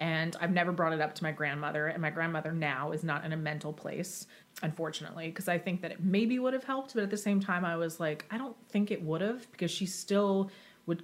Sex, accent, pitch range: female, American, 155-185 Hz